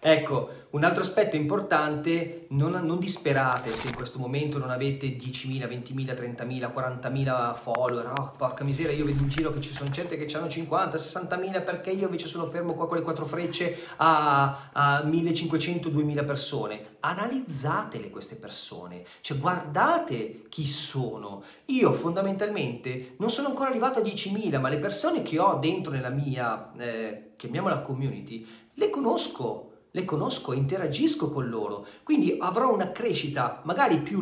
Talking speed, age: 155 wpm, 30-49